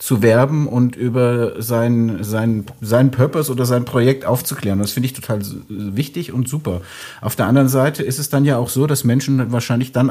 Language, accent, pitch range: German, German, 115-140 Hz